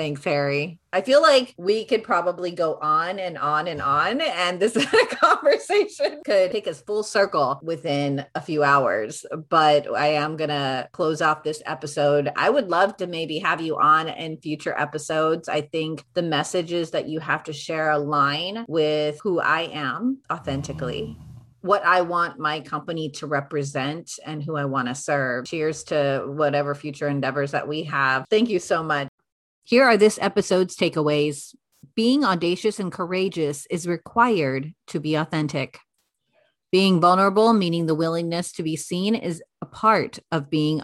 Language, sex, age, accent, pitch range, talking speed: English, female, 30-49, American, 150-195 Hz, 165 wpm